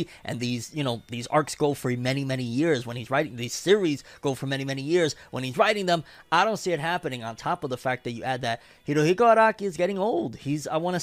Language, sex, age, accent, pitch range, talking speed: English, male, 30-49, American, 130-165 Hz, 260 wpm